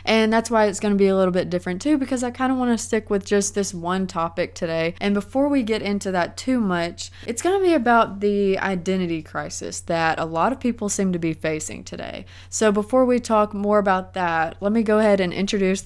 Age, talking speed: 20-39, 225 wpm